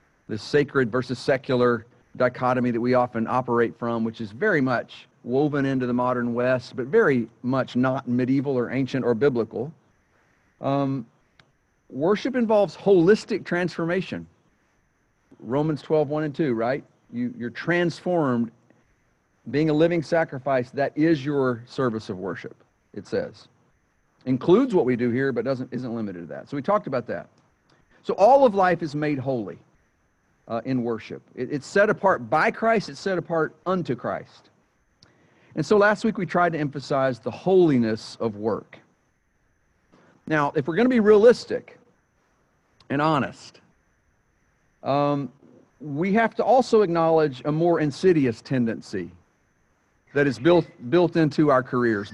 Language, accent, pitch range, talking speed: English, American, 125-175 Hz, 145 wpm